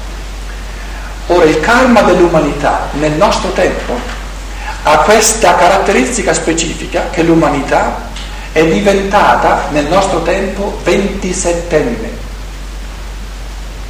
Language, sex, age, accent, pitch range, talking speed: Italian, male, 50-69, native, 150-180 Hz, 80 wpm